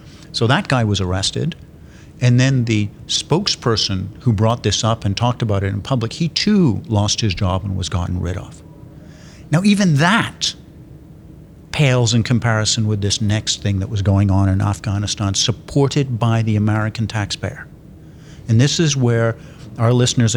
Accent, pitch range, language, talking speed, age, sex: American, 105-130 Hz, English, 165 wpm, 50-69, male